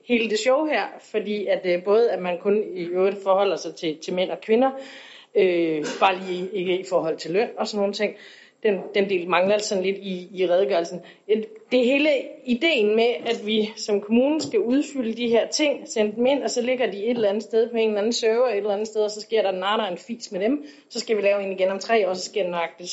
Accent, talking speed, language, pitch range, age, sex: native, 255 wpm, Danish, 190-255 Hz, 30-49, female